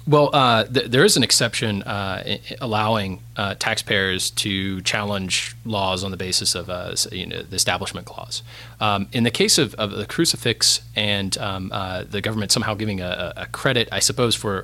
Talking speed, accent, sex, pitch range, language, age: 170 wpm, American, male, 100-120 Hz, English, 30-49